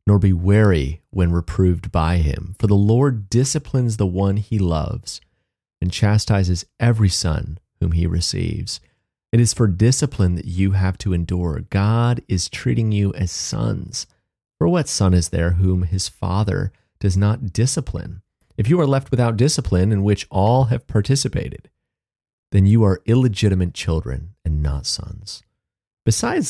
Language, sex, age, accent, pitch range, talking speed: English, male, 30-49, American, 90-115 Hz, 155 wpm